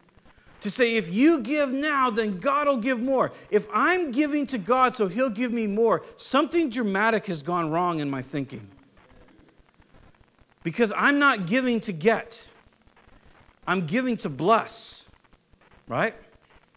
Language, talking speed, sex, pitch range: English, 145 wpm, male, 150-230 Hz